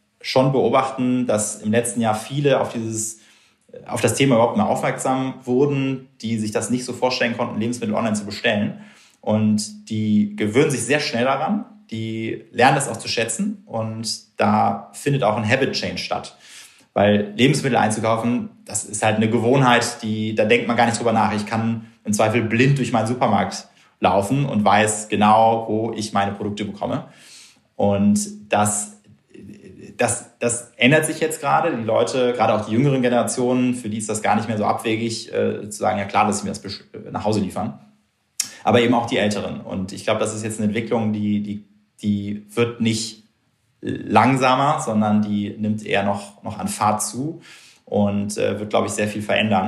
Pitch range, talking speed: 105-120 Hz, 185 wpm